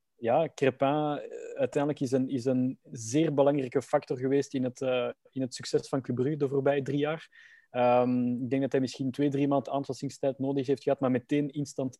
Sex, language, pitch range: male, Dutch, 130-145 Hz